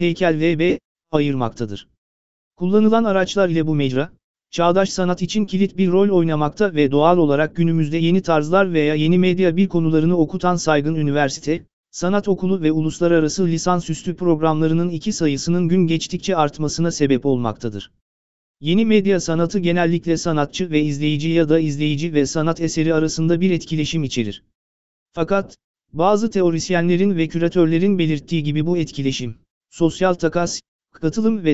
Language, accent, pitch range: Turkish, native, 150-180 Hz